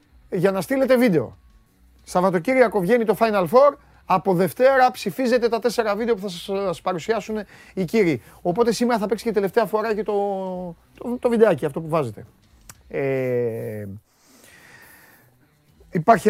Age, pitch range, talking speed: 30-49, 115-195 Hz, 135 wpm